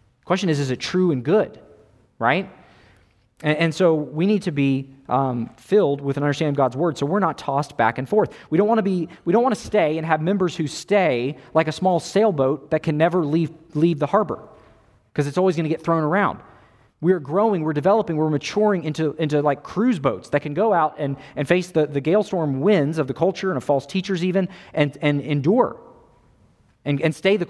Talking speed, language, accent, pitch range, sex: 225 wpm, English, American, 140-190 Hz, male